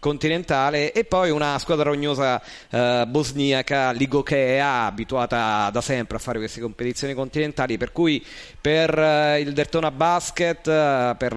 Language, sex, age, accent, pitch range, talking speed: Italian, male, 40-59, native, 115-135 Hz, 130 wpm